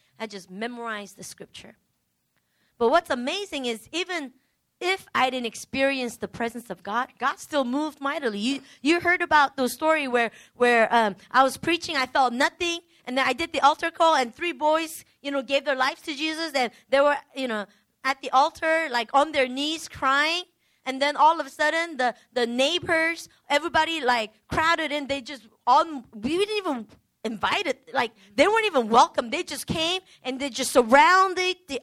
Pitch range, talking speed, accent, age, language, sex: 235-325 Hz, 190 wpm, American, 20-39, English, female